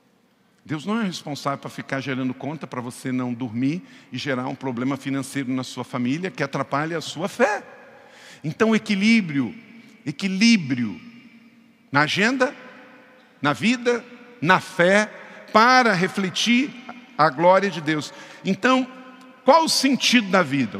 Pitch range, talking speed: 180-240 Hz, 135 wpm